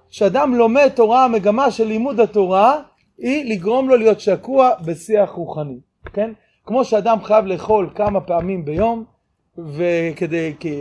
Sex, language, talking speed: male, Hebrew, 135 wpm